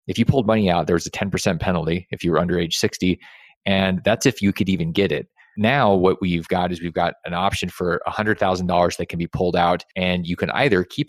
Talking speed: 260 wpm